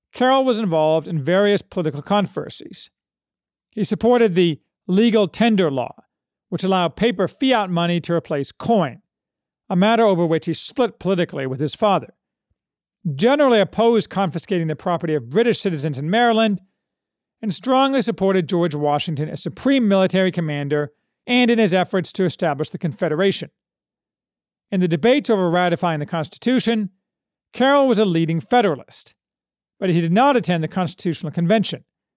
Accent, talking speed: American, 145 wpm